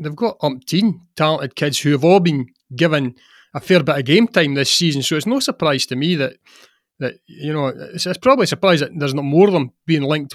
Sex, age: male, 30-49